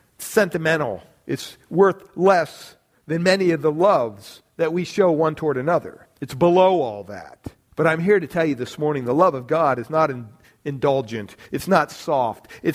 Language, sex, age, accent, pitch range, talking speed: English, male, 50-69, American, 155-200 Hz, 200 wpm